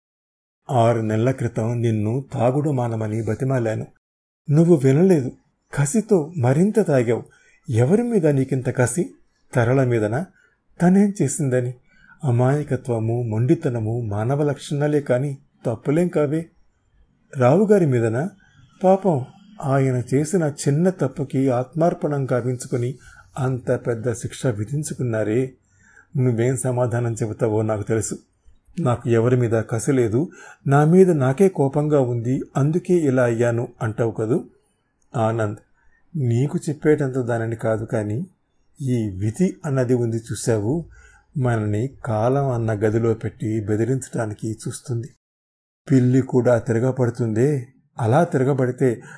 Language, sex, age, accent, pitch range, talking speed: Telugu, male, 30-49, native, 115-145 Hz, 100 wpm